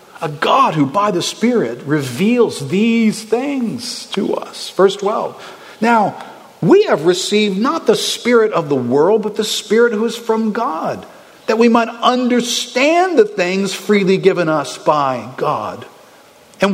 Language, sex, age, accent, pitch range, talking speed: English, male, 50-69, American, 140-225 Hz, 150 wpm